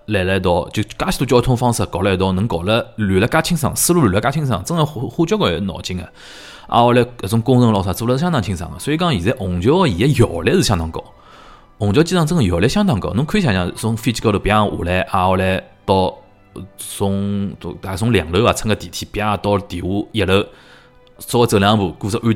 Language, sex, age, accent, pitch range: Chinese, male, 20-39, native, 95-120 Hz